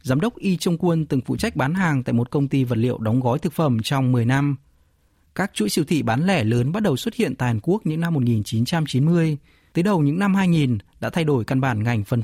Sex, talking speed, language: male, 255 wpm, Vietnamese